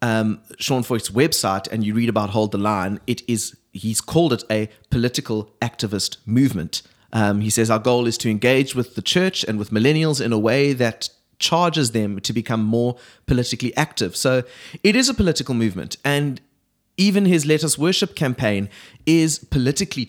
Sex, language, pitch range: male, English, 110-145 Hz